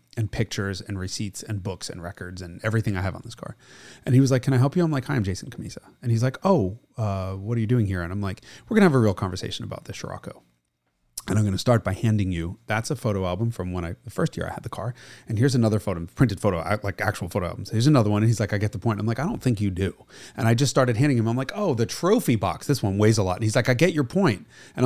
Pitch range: 105-145 Hz